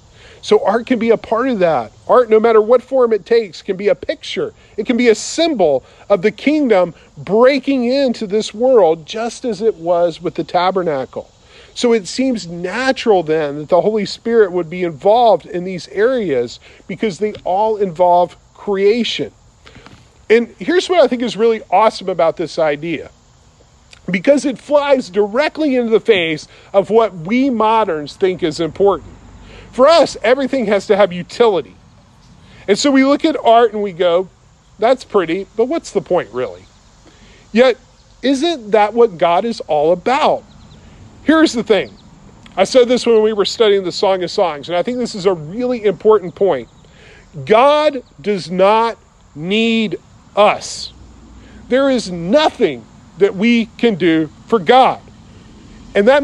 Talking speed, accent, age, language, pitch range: 165 wpm, American, 40-59, English, 185-250 Hz